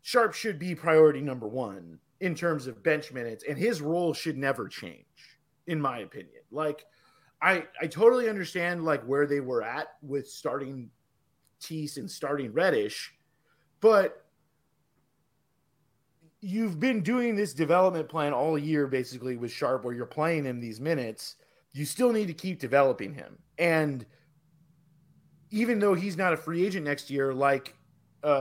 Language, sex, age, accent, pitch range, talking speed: English, male, 30-49, American, 140-175 Hz, 155 wpm